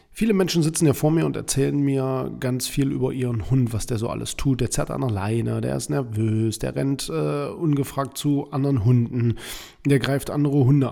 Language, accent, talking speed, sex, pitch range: German, German, 210 wpm, male, 115-145 Hz